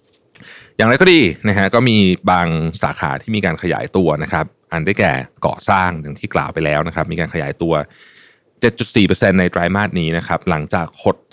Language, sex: Thai, male